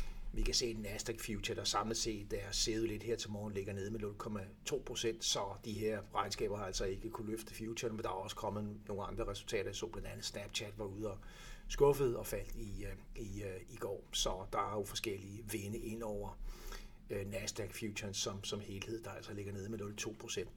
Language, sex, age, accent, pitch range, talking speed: Danish, male, 60-79, native, 105-115 Hz, 205 wpm